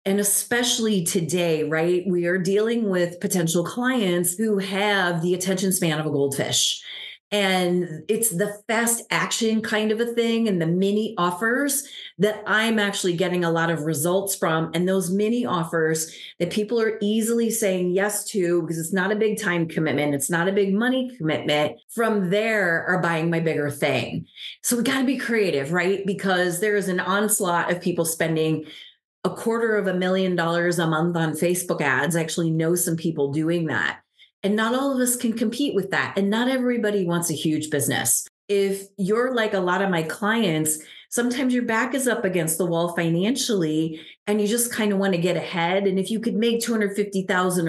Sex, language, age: female, English, 30-49